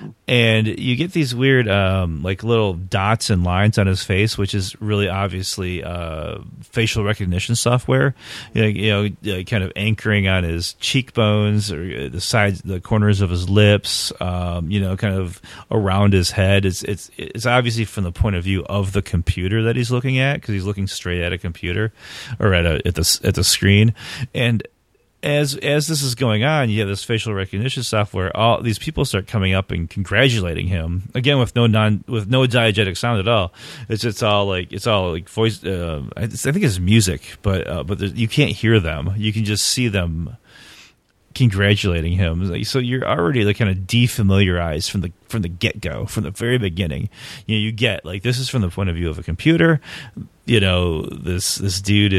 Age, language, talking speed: 30-49, English, 205 wpm